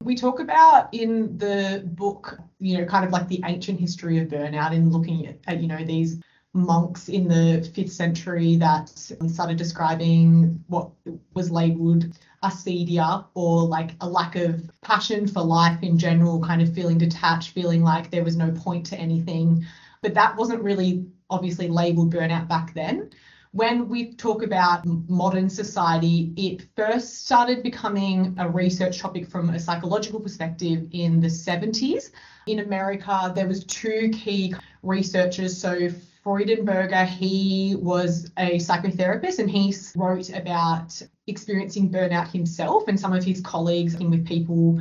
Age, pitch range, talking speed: 20-39, 165-195 Hz, 155 wpm